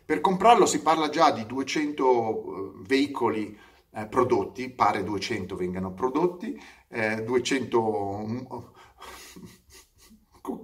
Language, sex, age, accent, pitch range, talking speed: Italian, male, 30-49, native, 110-175 Hz, 95 wpm